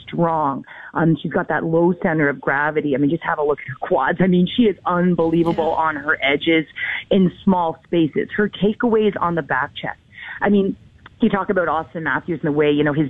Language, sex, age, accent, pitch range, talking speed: English, female, 30-49, American, 150-185 Hz, 220 wpm